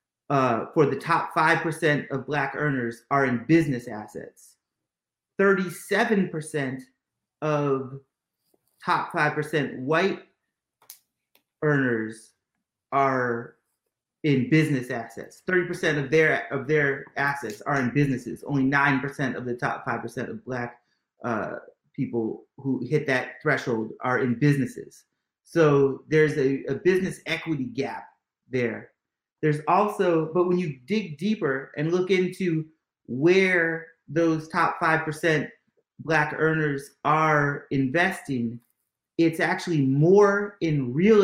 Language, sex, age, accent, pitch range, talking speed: English, male, 30-49, American, 135-165 Hz, 115 wpm